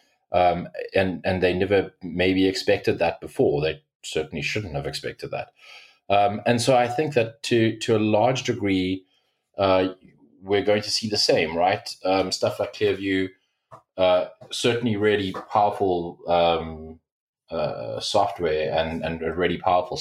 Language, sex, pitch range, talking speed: English, male, 85-105 Hz, 150 wpm